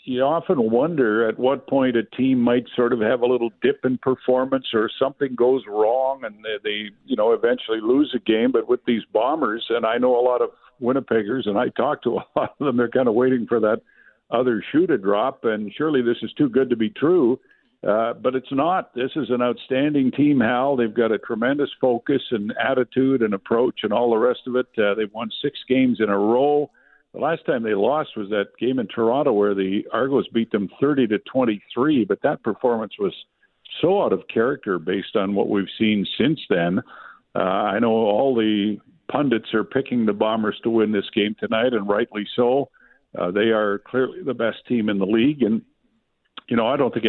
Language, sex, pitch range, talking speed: English, male, 110-135 Hz, 215 wpm